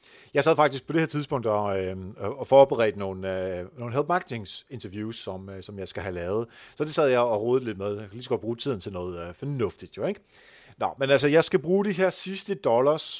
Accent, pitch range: native, 105-145 Hz